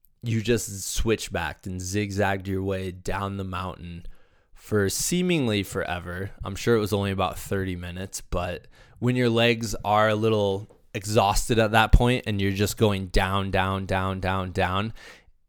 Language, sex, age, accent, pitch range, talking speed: English, male, 20-39, American, 95-120 Hz, 160 wpm